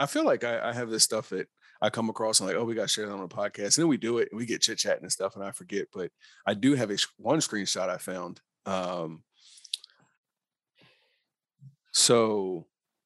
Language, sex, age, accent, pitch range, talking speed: English, male, 40-59, American, 95-115 Hz, 230 wpm